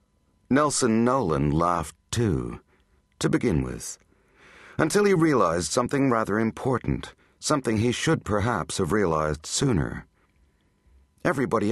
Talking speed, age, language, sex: 110 wpm, 60-79, English, male